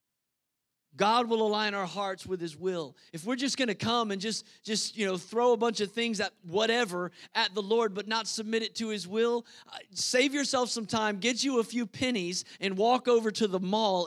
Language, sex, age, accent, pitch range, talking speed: English, male, 40-59, American, 175-230 Hz, 220 wpm